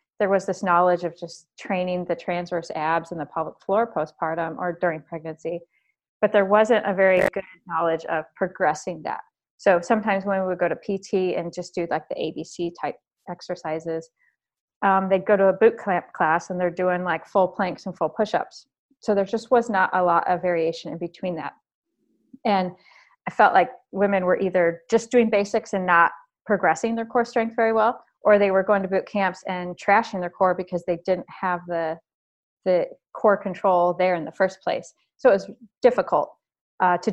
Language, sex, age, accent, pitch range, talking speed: English, female, 30-49, American, 175-210 Hz, 195 wpm